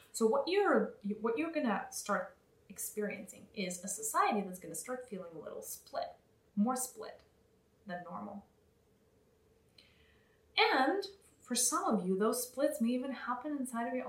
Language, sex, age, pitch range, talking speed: English, female, 30-49, 200-255 Hz, 150 wpm